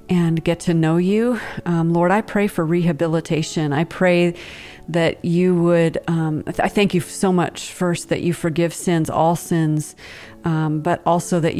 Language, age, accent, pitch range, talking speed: English, 40-59, American, 155-175 Hz, 170 wpm